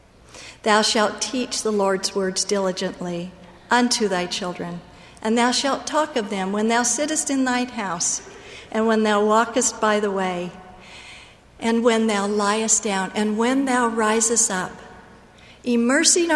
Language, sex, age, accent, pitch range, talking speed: English, female, 50-69, American, 200-245 Hz, 145 wpm